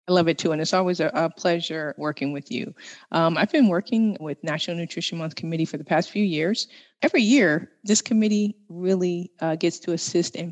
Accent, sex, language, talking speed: American, female, English, 205 wpm